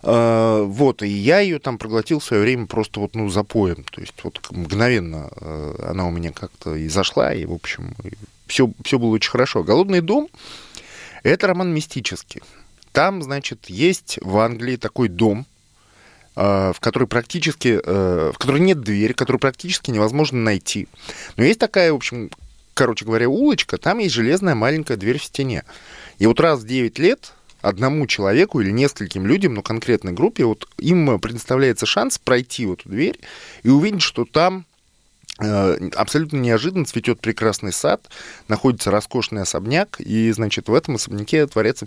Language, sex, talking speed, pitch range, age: Russian, male, 155 wpm, 105-140 Hz, 20-39